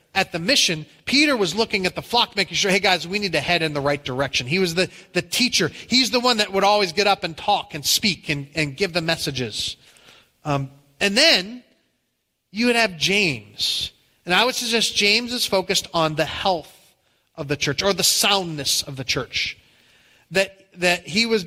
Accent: American